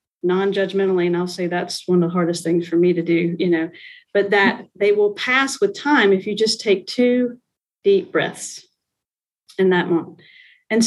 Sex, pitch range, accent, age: female, 185-230 Hz, American, 40-59